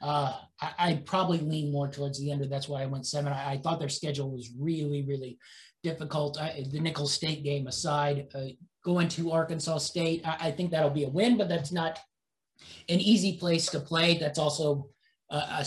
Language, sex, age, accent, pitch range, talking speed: English, male, 30-49, American, 150-190 Hz, 205 wpm